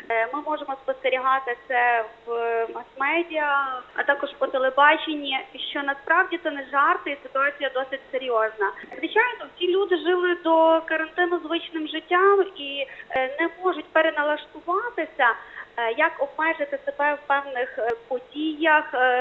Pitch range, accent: 270-345 Hz, native